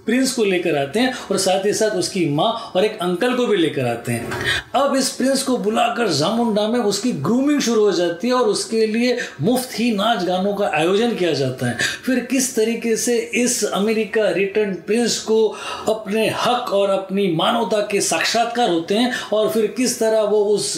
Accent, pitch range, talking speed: native, 200-230 Hz, 195 wpm